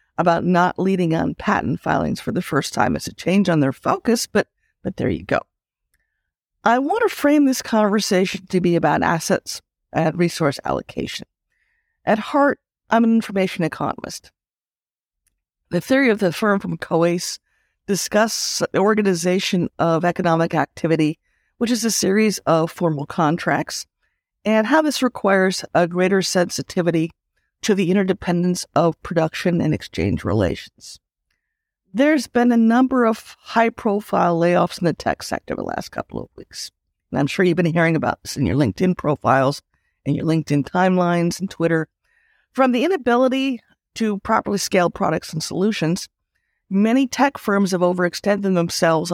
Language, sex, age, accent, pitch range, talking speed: English, female, 50-69, American, 165-215 Hz, 150 wpm